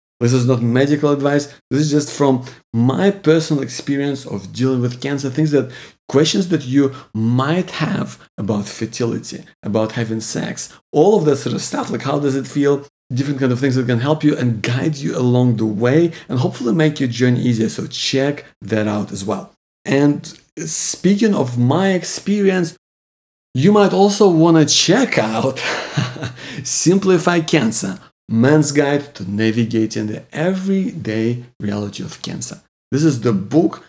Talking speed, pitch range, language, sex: 165 wpm, 120-160 Hz, English, male